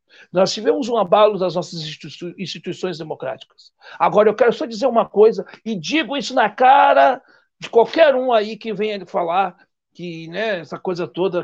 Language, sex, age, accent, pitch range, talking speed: Portuguese, male, 60-79, Brazilian, 180-245 Hz, 170 wpm